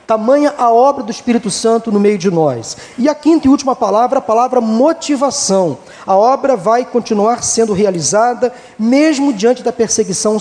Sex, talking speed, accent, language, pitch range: male, 165 wpm, Brazilian, Portuguese, 210-265 Hz